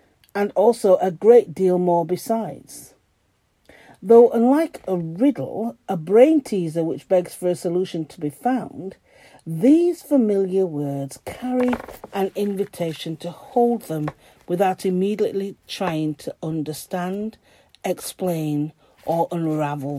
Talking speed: 115 wpm